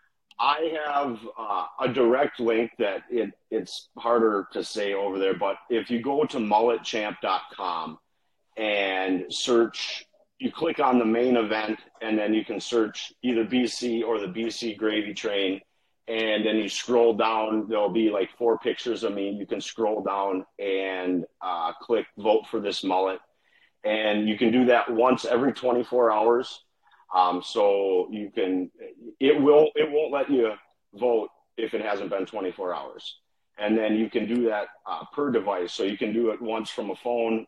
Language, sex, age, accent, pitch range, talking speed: English, male, 40-59, American, 100-120 Hz, 170 wpm